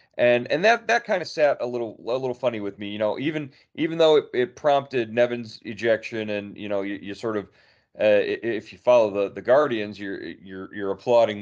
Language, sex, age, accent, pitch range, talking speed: English, male, 30-49, American, 100-120 Hz, 220 wpm